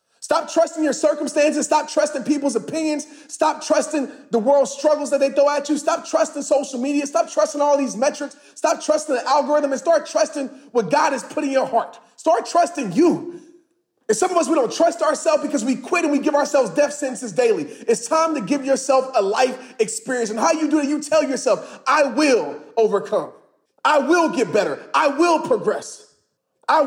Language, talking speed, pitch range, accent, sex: English, 200 wpm, 275-320 Hz, American, male